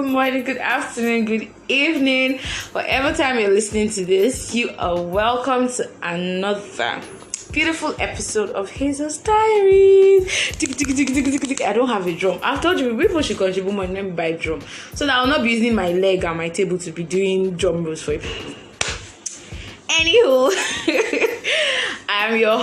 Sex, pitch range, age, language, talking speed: female, 180-260 Hz, 20-39, English, 155 wpm